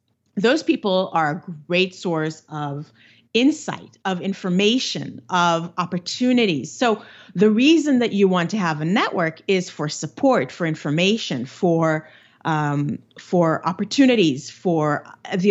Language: English